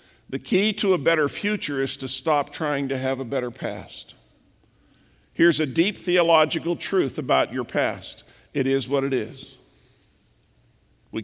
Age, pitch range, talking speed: 50-69, 125-160 Hz, 155 wpm